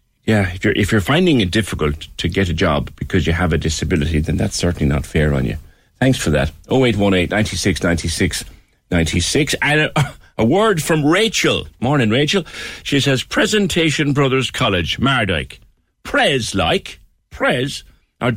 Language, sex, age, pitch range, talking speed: English, male, 60-79, 80-135 Hz, 155 wpm